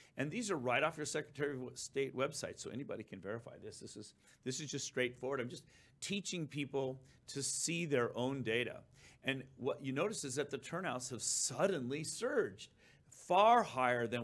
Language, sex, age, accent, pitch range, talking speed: English, male, 40-59, American, 120-155 Hz, 185 wpm